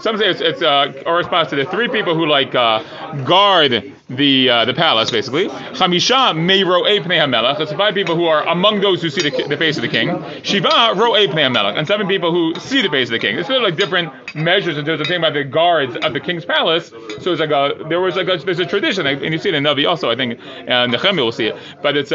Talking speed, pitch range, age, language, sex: 250 wpm, 160-215 Hz, 30-49, English, male